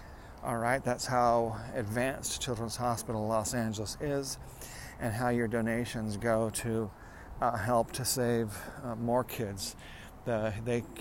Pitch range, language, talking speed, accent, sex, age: 105-125 Hz, English, 135 wpm, American, male, 40-59